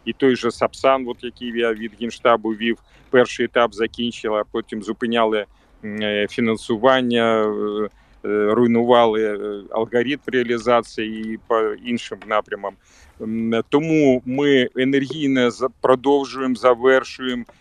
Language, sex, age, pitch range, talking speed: Ukrainian, male, 40-59, 115-130 Hz, 95 wpm